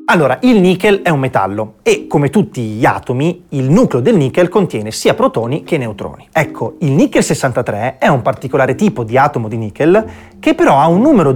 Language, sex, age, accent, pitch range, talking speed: Italian, male, 30-49, native, 120-200 Hz, 195 wpm